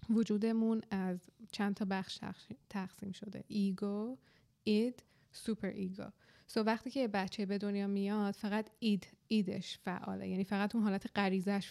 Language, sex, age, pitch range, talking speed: Persian, female, 20-39, 195-225 Hz, 145 wpm